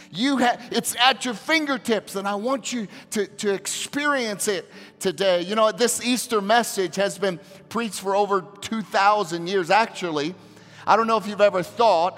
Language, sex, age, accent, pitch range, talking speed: English, male, 40-59, American, 175-230 Hz, 170 wpm